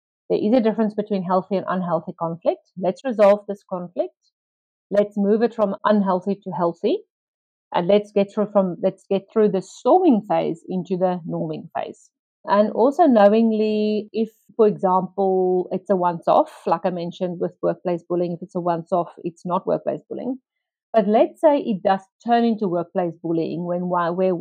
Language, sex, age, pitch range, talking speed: English, female, 50-69, 180-215 Hz, 170 wpm